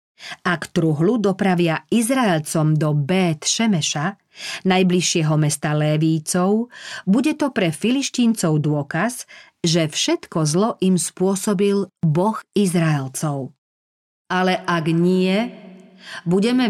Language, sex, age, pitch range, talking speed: Slovak, female, 40-59, 165-210 Hz, 95 wpm